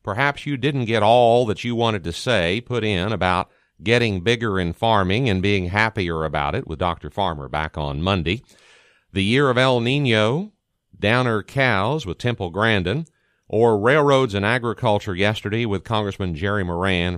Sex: male